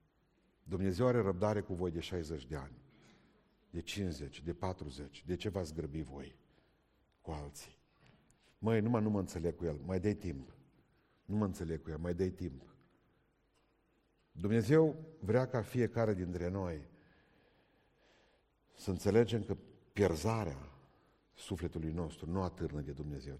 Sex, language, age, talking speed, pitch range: male, Romanian, 50-69, 140 wpm, 80-105 Hz